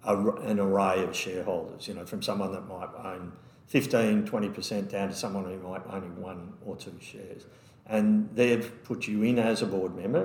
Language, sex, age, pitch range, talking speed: English, male, 50-69, 100-115 Hz, 185 wpm